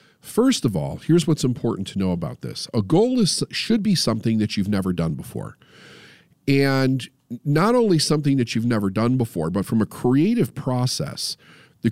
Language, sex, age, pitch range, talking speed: English, male, 50-69, 105-150 Hz, 180 wpm